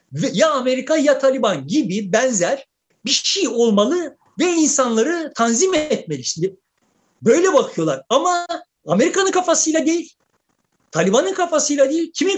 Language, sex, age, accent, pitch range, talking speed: Turkish, male, 50-69, native, 220-325 Hz, 110 wpm